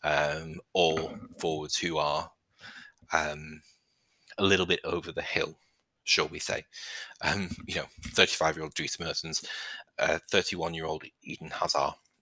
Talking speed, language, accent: 125 wpm, English, British